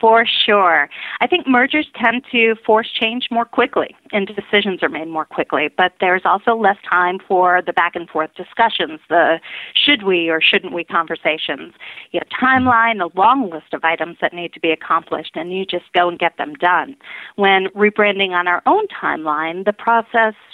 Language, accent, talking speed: English, American, 190 wpm